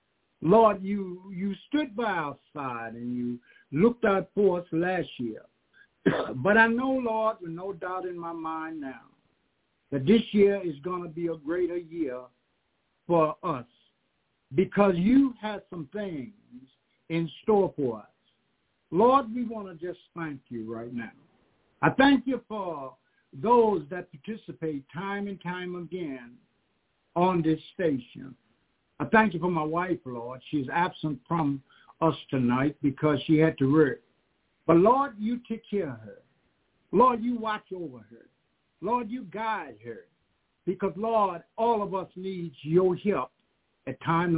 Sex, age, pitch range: male, 60-79, 150-210 Hz